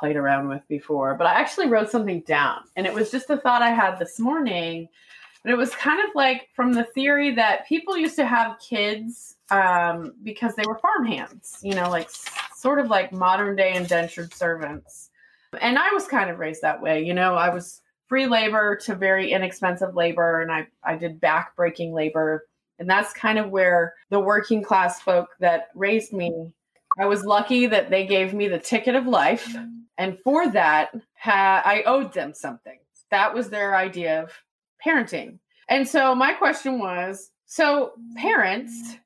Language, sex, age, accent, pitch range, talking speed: English, female, 20-39, American, 175-245 Hz, 180 wpm